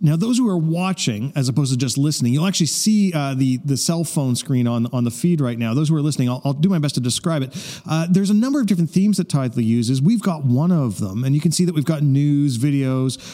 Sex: male